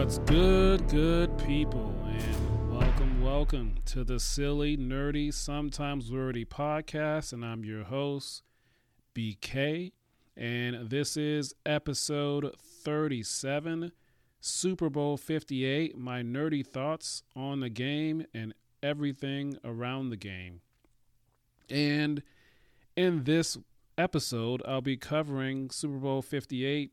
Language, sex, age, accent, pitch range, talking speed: English, male, 40-59, American, 115-145 Hz, 105 wpm